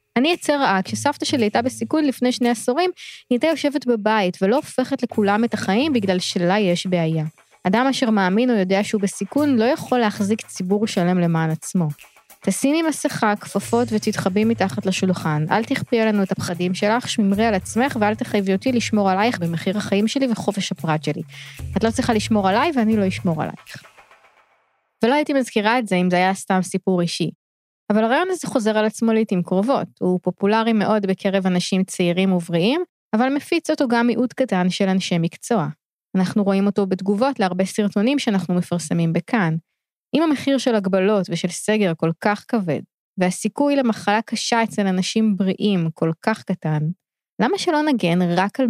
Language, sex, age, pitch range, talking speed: Hebrew, female, 20-39, 185-240 Hz, 160 wpm